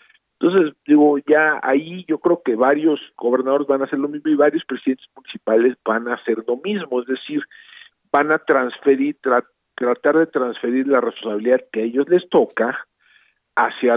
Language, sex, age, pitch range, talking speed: Spanish, male, 50-69, 125-155 Hz, 170 wpm